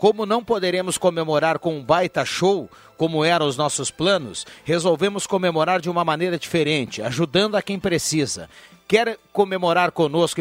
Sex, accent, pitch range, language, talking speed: male, Brazilian, 155-185 Hz, Portuguese, 150 wpm